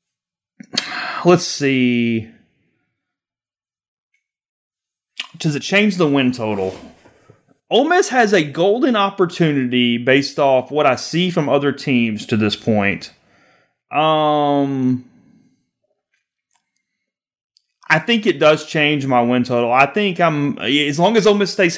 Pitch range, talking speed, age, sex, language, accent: 130-170 Hz, 120 wpm, 30-49, male, English, American